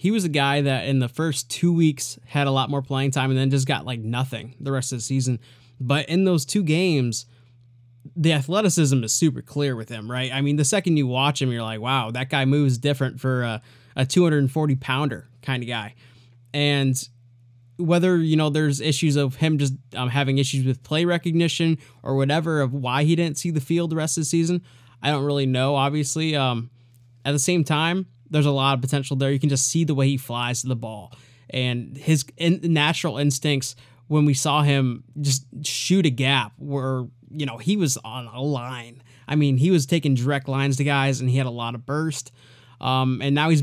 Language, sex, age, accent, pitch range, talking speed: English, male, 20-39, American, 125-150 Hz, 215 wpm